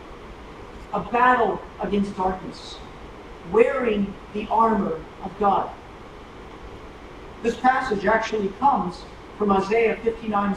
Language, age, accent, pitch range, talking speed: English, 50-69, American, 200-245 Hz, 90 wpm